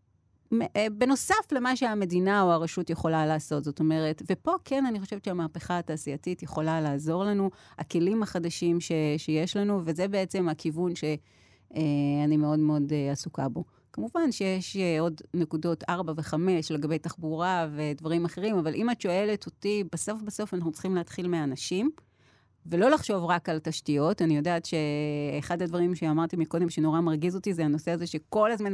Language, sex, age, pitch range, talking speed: Hebrew, female, 30-49, 155-200 Hz, 155 wpm